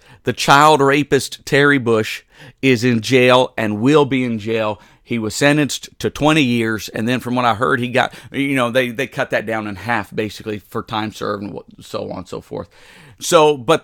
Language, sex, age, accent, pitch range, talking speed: English, male, 50-69, American, 120-165 Hz, 210 wpm